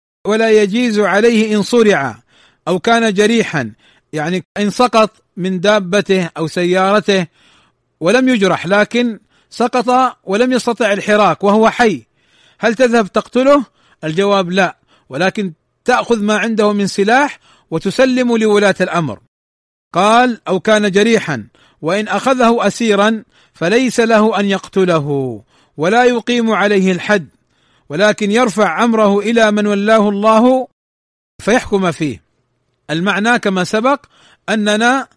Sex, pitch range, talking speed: male, 180-230 Hz, 115 wpm